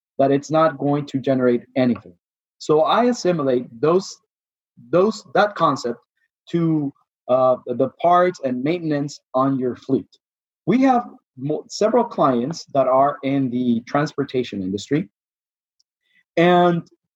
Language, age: English, 30-49